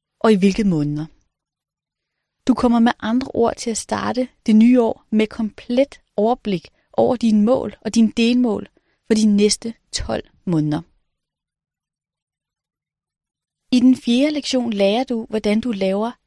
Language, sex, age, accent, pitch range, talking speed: Danish, female, 30-49, native, 210-255 Hz, 140 wpm